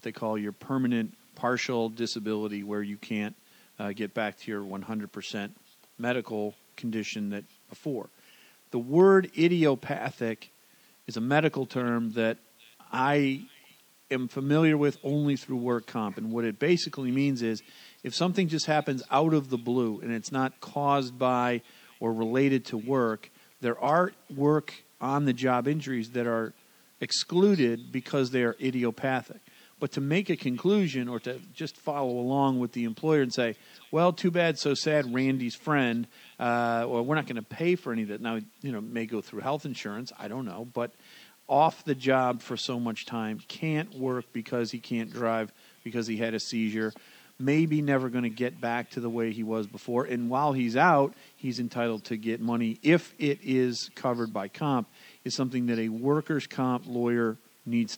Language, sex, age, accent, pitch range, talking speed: English, male, 40-59, American, 115-140 Hz, 175 wpm